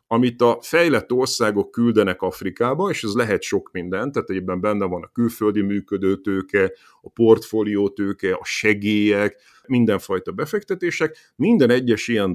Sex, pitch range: male, 105-145 Hz